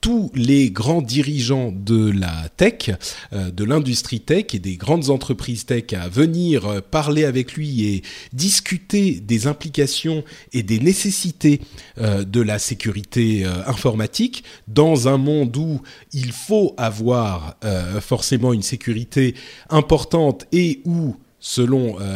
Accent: French